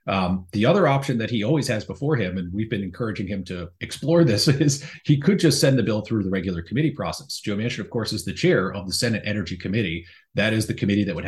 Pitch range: 95-120 Hz